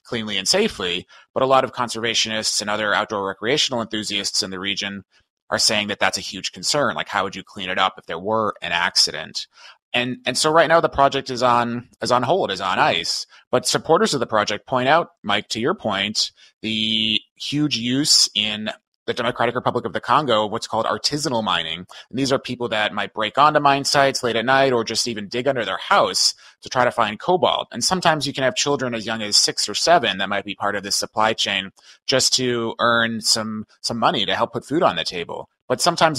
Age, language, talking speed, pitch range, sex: 30-49, English, 225 wpm, 105-130 Hz, male